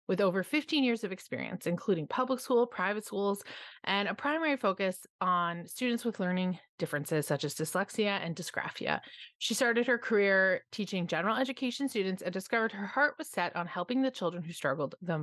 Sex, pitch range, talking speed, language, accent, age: female, 175-225 Hz, 180 wpm, English, American, 30-49